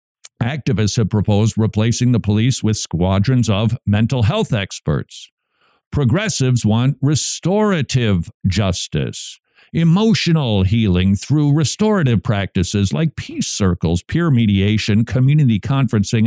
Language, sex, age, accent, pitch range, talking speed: English, male, 50-69, American, 105-135 Hz, 105 wpm